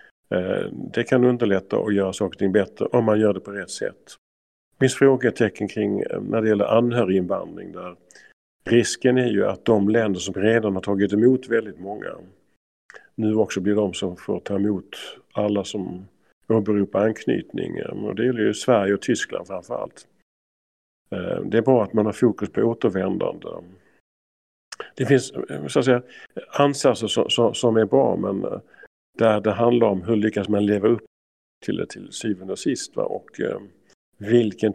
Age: 50-69